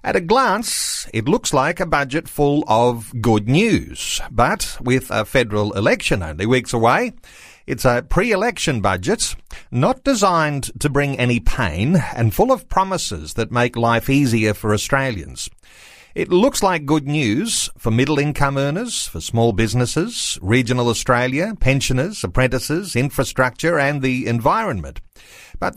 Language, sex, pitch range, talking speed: English, male, 115-150 Hz, 140 wpm